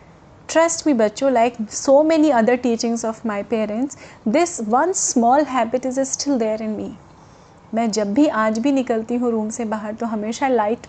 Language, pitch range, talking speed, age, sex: Hindi, 220-285 Hz, 185 wpm, 30-49, female